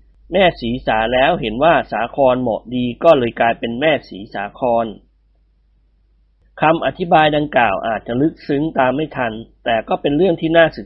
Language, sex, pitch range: Thai, male, 115-155 Hz